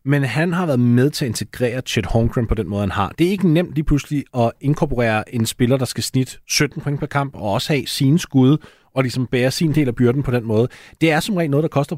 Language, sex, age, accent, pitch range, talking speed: Danish, male, 30-49, native, 115-150 Hz, 270 wpm